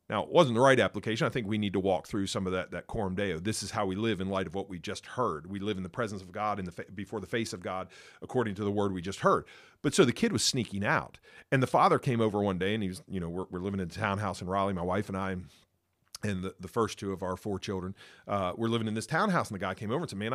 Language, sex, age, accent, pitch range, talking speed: English, male, 40-59, American, 100-130 Hz, 315 wpm